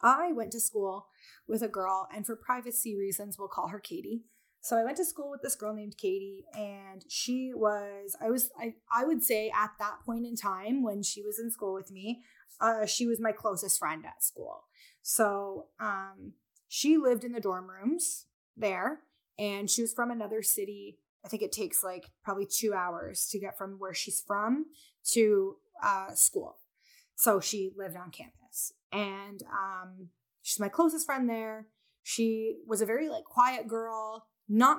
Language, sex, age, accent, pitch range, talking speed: English, female, 20-39, American, 200-235 Hz, 185 wpm